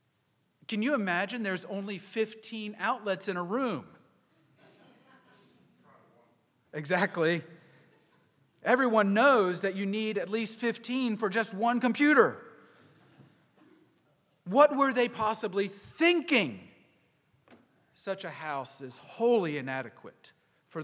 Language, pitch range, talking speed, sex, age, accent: English, 150-210 Hz, 100 wpm, male, 40-59, American